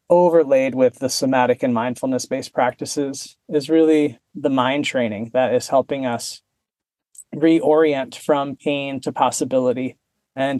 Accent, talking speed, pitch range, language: American, 130 wpm, 130-160 Hz, English